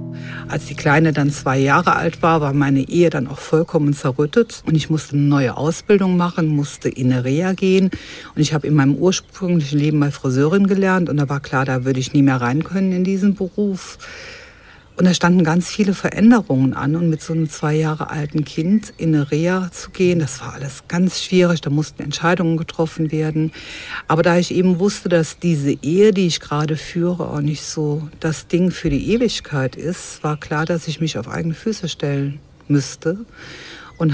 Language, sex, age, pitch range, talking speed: German, female, 60-79, 145-180 Hz, 200 wpm